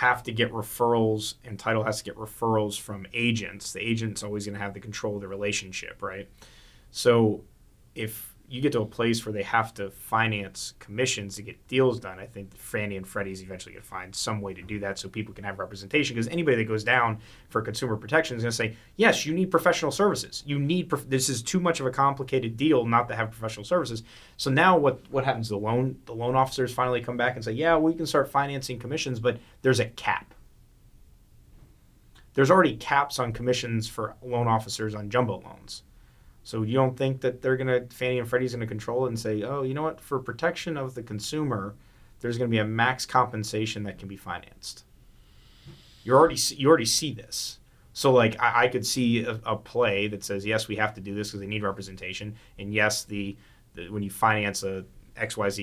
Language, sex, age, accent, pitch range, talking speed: English, male, 20-39, American, 100-125 Hz, 215 wpm